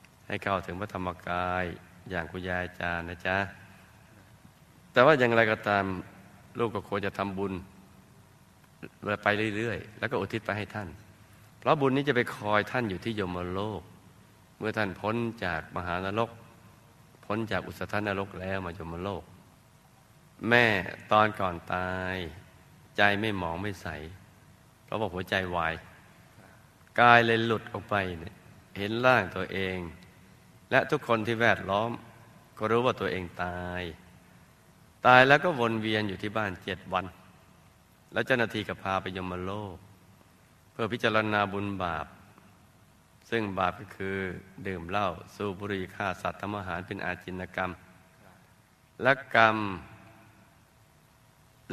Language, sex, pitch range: Thai, male, 90-110 Hz